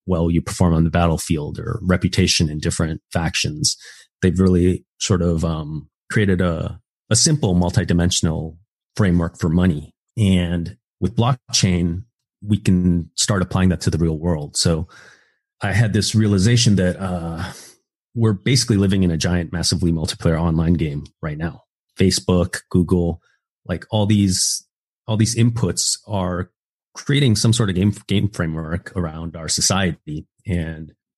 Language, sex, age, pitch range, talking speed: English, male, 30-49, 85-95 Hz, 145 wpm